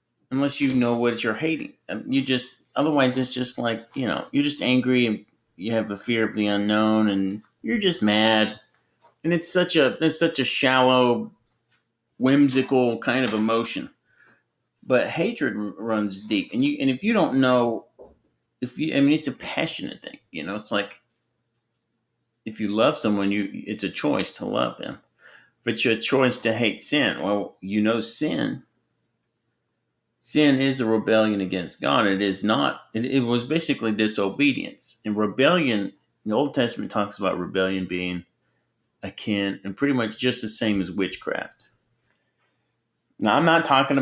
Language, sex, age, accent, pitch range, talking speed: English, male, 40-59, American, 105-130 Hz, 165 wpm